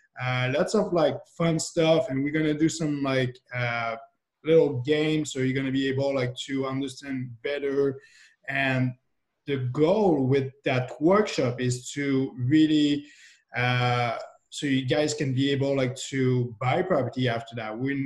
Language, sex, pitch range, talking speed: English, male, 125-150 Hz, 165 wpm